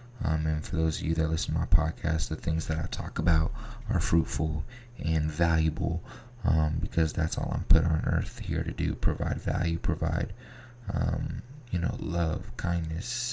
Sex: male